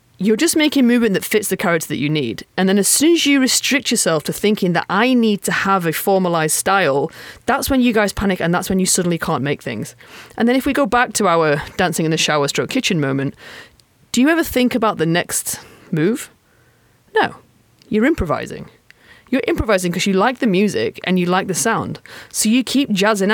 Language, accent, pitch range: English, British, 160-225 Hz